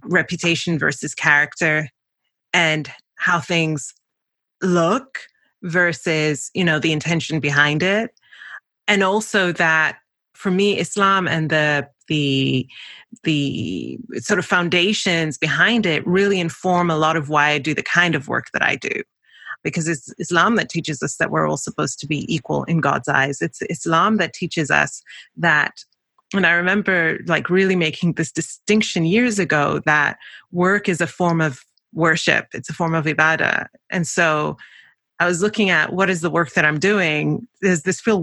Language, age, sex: English, 30-49, female